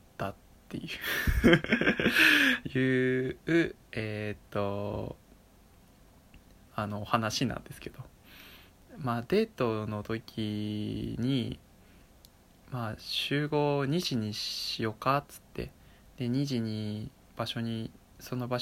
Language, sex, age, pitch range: Japanese, male, 20-39, 110-135 Hz